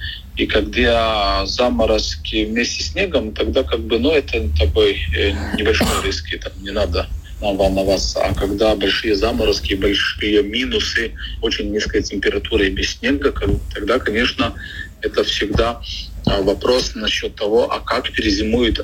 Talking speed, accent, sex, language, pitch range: 125 wpm, native, male, Russian, 80-110 Hz